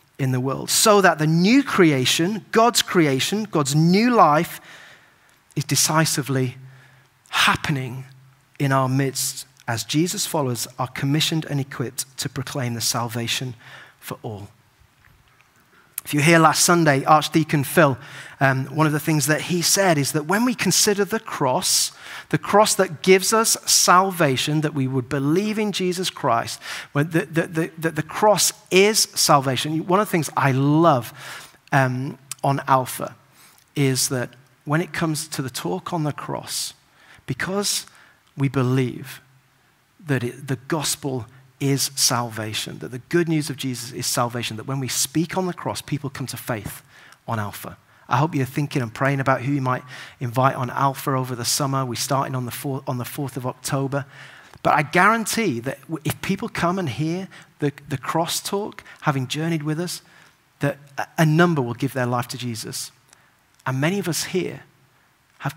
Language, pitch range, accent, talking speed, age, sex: English, 130-165 Hz, British, 170 wpm, 30-49, male